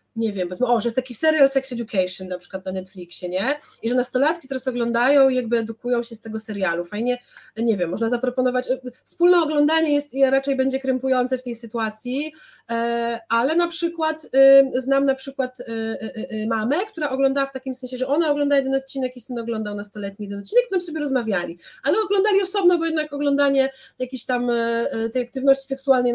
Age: 30-49